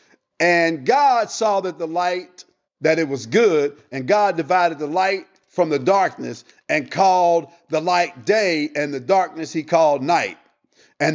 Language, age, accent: English, 50-69, American